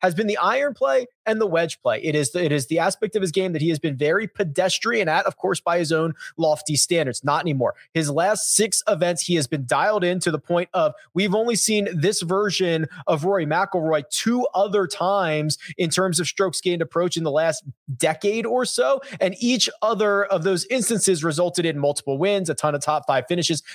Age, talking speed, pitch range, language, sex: 30-49, 220 wpm, 160-210 Hz, English, male